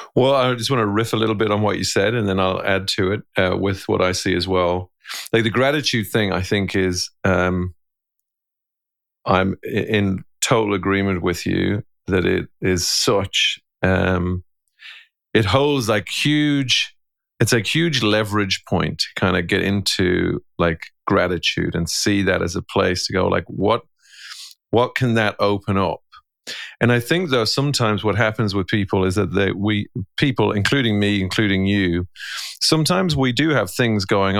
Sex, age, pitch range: male, 40-59, 95-110 Hz